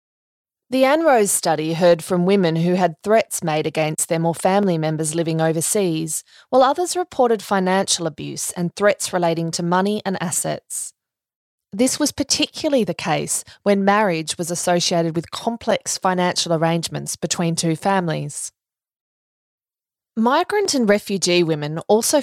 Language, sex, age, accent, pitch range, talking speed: English, female, 20-39, Australian, 165-215 Hz, 135 wpm